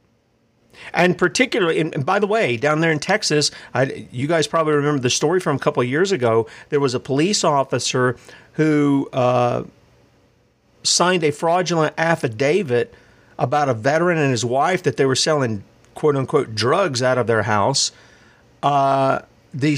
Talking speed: 160 wpm